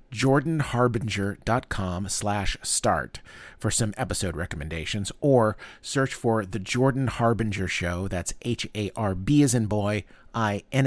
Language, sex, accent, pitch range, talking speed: English, male, American, 100-140 Hz, 110 wpm